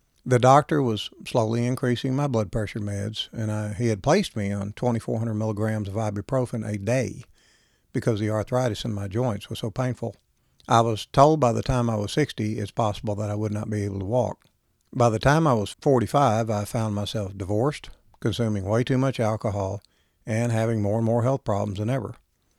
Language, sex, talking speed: English, male, 195 wpm